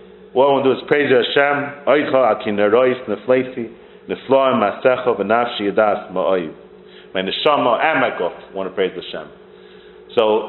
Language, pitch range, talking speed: English, 100-145 Hz, 55 wpm